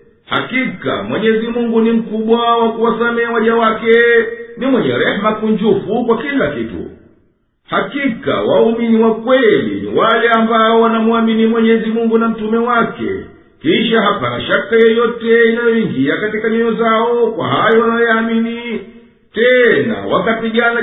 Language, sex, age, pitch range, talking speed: Swahili, male, 50-69, 220-235 Hz, 115 wpm